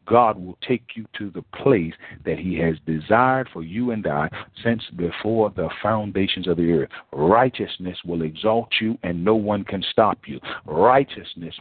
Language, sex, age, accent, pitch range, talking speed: English, male, 50-69, American, 95-130 Hz, 170 wpm